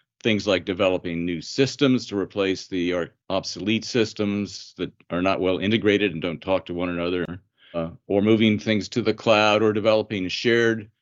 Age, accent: 50-69, American